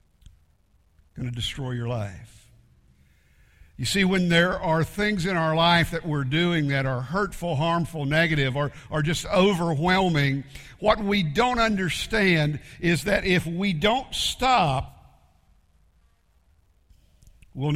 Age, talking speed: 60-79, 125 wpm